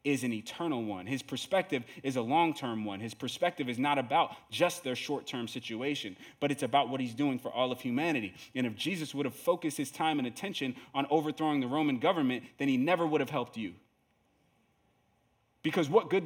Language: English